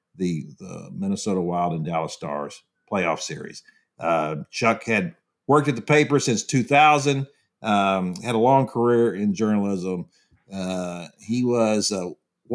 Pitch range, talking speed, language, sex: 105-145 Hz, 140 wpm, English, male